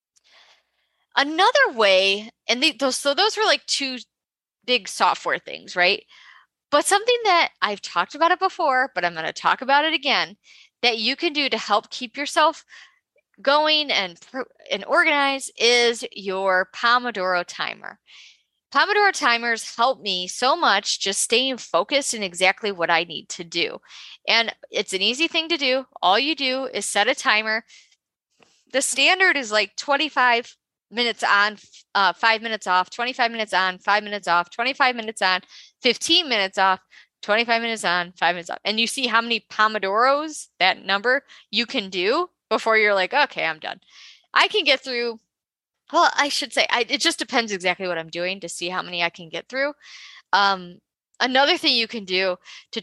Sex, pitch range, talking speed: female, 195-280 Hz, 175 wpm